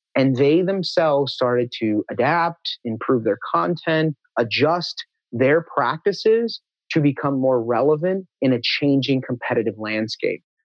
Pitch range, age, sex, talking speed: 120-155 Hz, 30-49, male, 120 wpm